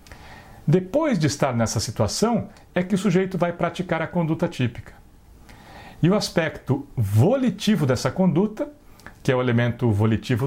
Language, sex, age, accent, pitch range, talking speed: Portuguese, male, 60-79, Brazilian, 130-210 Hz, 145 wpm